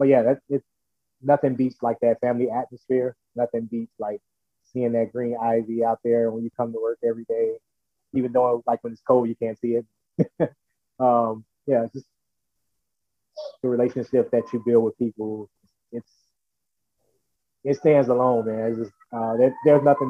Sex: male